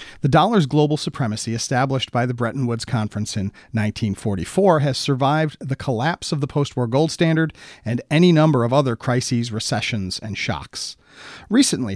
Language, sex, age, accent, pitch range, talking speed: English, male, 40-59, American, 115-155 Hz, 155 wpm